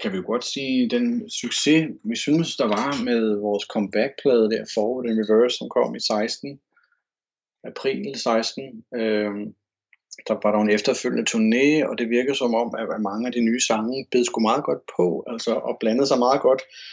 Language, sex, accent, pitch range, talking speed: Danish, male, native, 110-135 Hz, 180 wpm